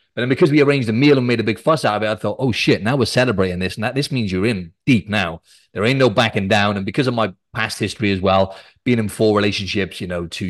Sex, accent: male, British